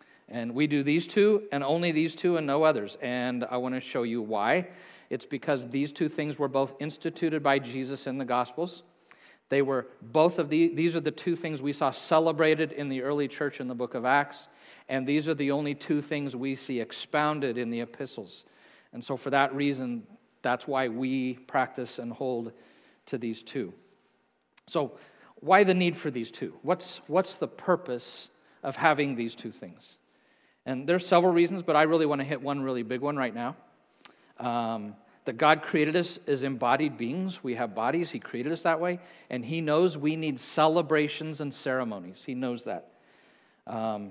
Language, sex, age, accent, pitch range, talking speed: English, male, 50-69, American, 130-160 Hz, 195 wpm